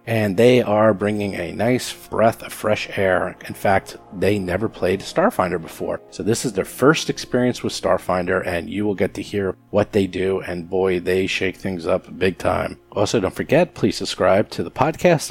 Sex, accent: male, American